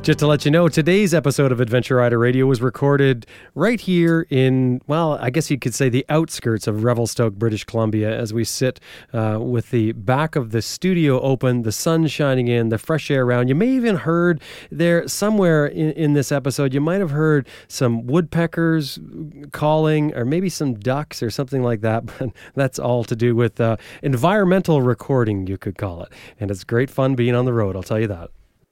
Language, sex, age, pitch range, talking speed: English, male, 30-49, 120-160 Hz, 200 wpm